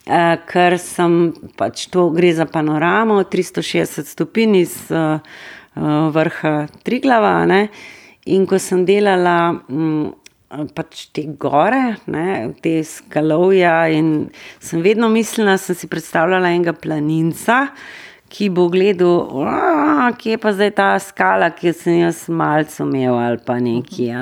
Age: 30-49